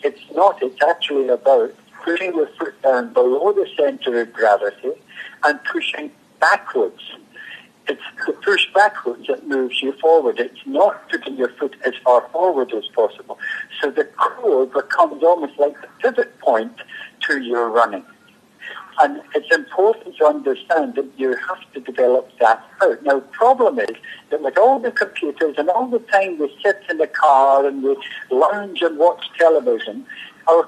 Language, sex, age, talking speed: English, male, 60-79, 165 wpm